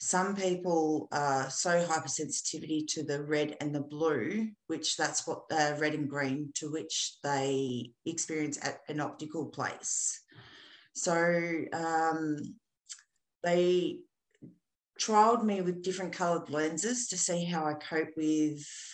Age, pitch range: 40-59, 145-180 Hz